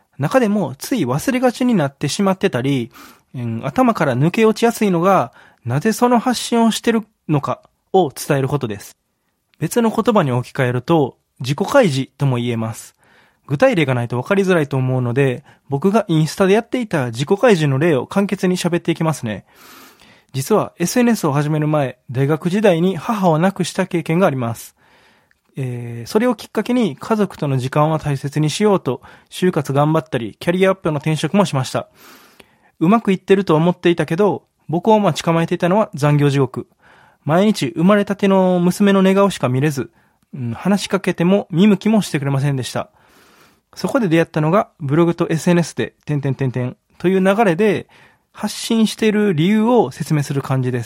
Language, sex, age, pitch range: Japanese, male, 20-39, 140-200 Hz